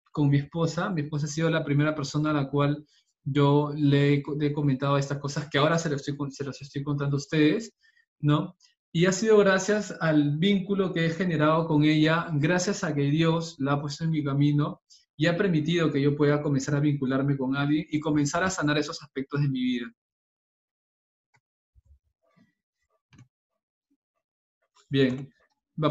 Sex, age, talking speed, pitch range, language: male, 20-39, 170 wpm, 145-185 Hz, Spanish